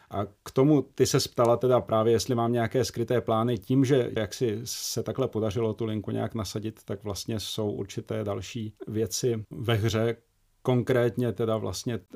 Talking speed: 175 wpm